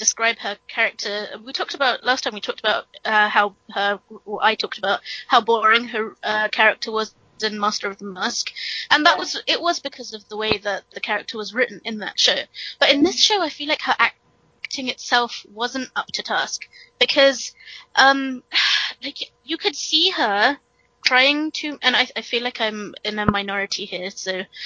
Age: 20-39